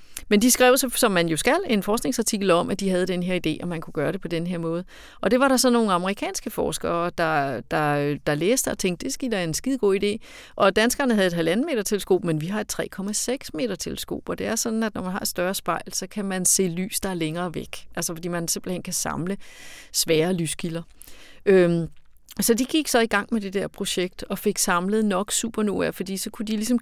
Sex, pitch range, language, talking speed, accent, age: female, 180-230 Hz, Danish, 235 wpm, native, 30-49